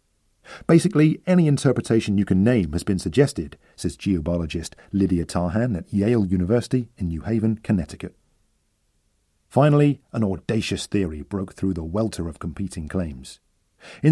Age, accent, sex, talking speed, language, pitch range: 40-59, British, male, 135 wpm, English, 95-135 Hz